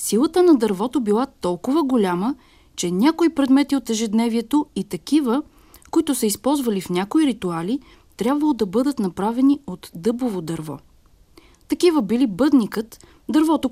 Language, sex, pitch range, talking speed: Bulgarian, female, 205-290 Hz, 130 wpm